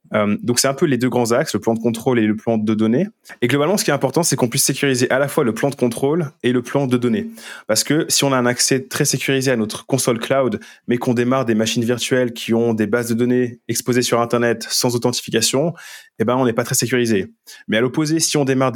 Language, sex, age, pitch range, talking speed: French, male, 20-39, 115-135 Hz, 260 wpm